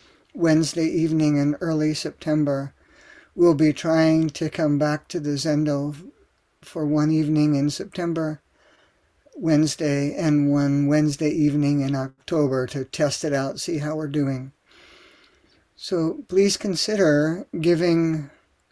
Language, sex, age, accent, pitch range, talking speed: English, male, 50-69, American, 145-165 Hz, 120 wpm